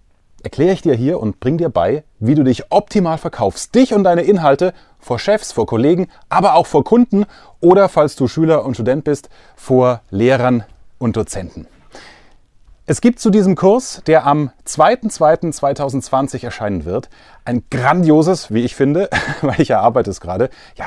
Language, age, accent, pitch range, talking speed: German, 30-49, German, 105-165 Hz, 165 wpm